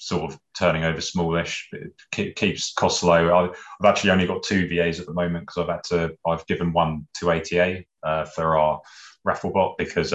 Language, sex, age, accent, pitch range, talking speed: English, male, 20-39, British, 80-90 Hz, 195 wpm